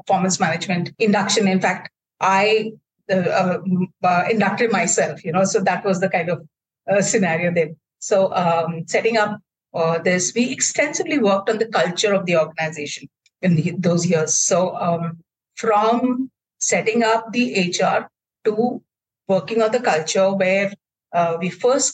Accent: Indian